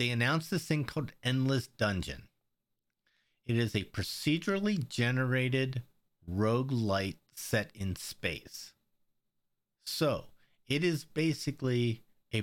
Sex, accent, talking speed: male, American, 105 wpm